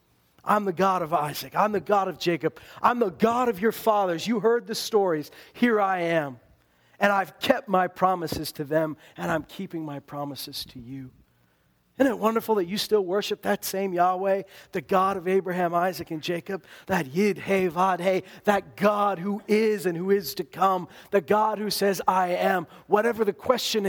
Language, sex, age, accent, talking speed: English, male, 40-59, American, 195 wpm